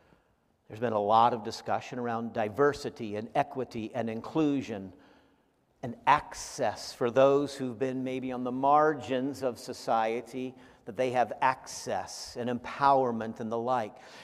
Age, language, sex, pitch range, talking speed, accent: 50-69, English, male, 125-185 Hz, 140 wpm, American